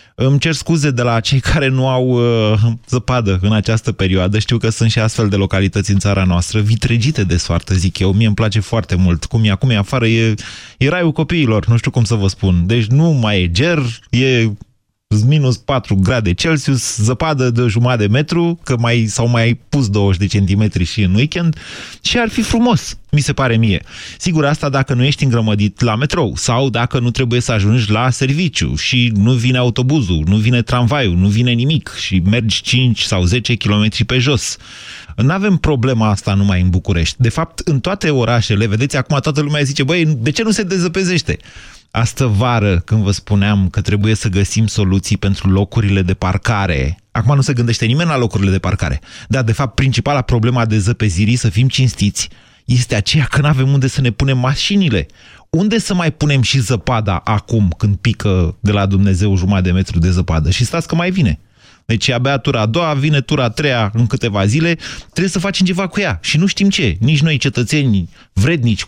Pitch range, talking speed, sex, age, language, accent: 105-140 Hz, 200 wpm, male, 20-39, Romanian, native